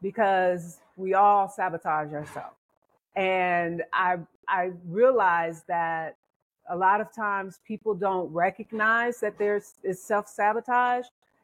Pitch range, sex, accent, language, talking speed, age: 180-225 Hz, female, American, English, 110 wpm, 40-59